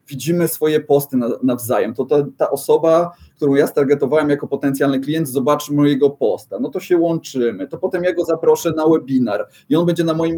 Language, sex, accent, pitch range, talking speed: Polish, male, native, 145-170 Hz, 185 wpm